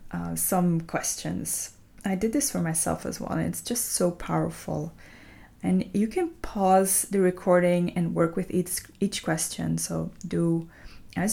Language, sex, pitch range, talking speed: English, female, 155-200 Hz, 160 wpm